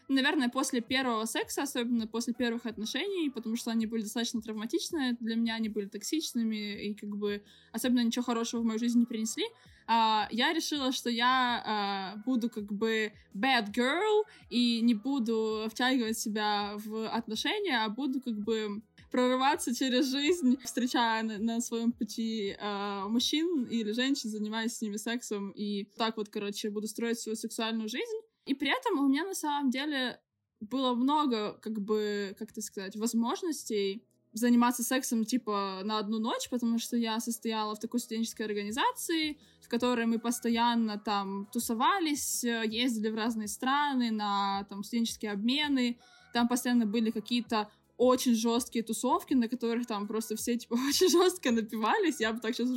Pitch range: 220-255 Hz